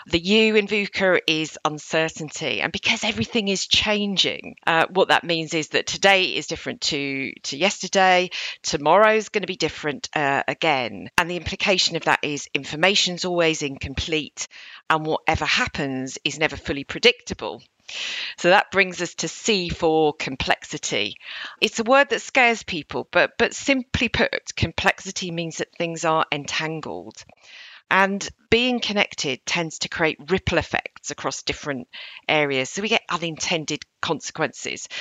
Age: 40-59